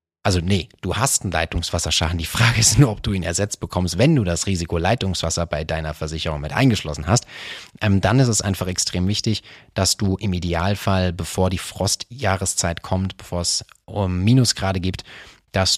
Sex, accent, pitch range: male, German, 90-115 Hz